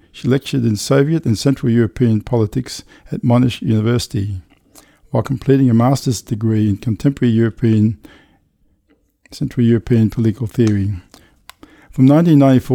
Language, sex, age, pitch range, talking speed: English, male, 50-69, 110-130 Hz, 120 wpm